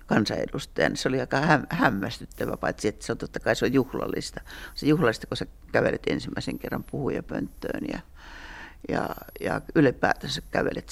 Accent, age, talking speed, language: native, 60-79, 160 wpm, Finnish